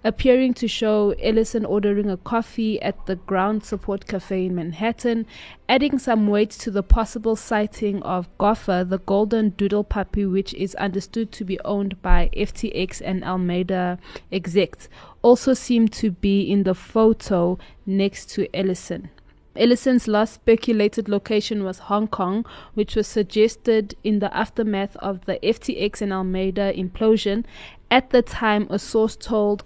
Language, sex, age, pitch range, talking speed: English, female, 20-39, 190-225 Hz, 150 wpm